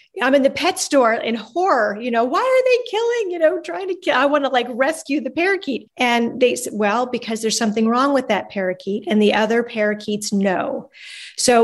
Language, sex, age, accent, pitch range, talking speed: English, female, 40-59, American, 210-245 Hz, 210 wpm